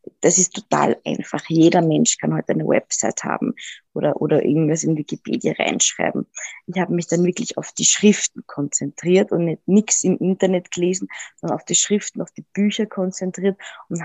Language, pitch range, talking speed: German, 160-185 Hz, 180 wpm